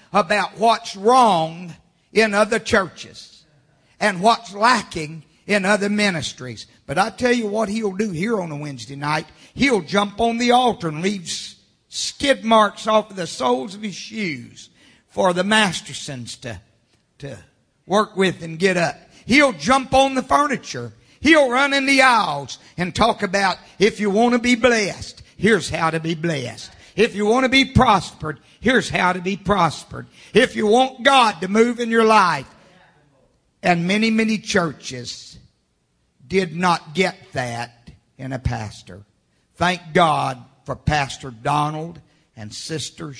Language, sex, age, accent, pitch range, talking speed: English, male, 50-69, American, 130-210 Hz, 155 wpm